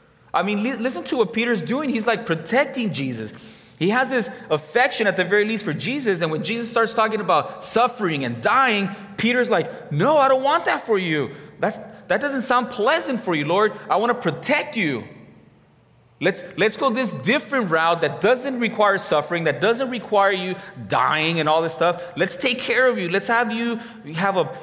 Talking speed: 195 wpm